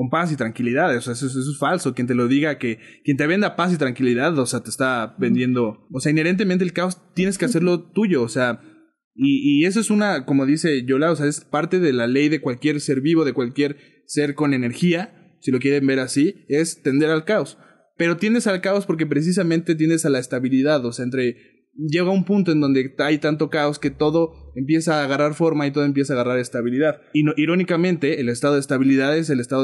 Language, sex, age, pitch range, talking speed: Spanish, male, 20-39, 135-170 Hz, 230 wpm